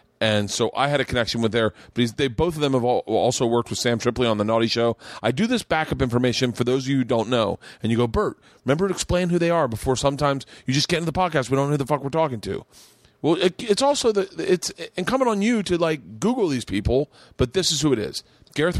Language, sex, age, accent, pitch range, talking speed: English, male, 30-49, American, 115-150 Hz, 270 wpm